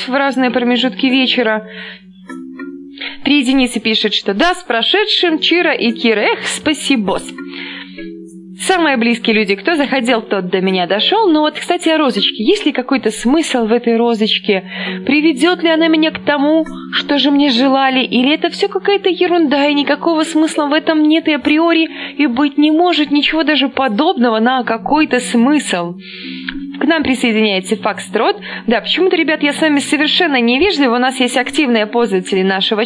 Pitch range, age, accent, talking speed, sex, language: 225-310 Hz, 20-39, native, 160 wpm, female, Russian